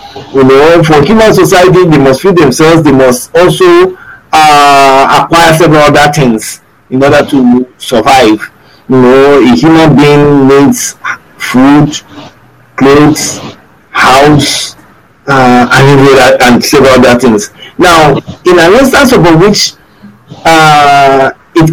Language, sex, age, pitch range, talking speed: English, male, 50-69, 140-175 Hz, 120 wpm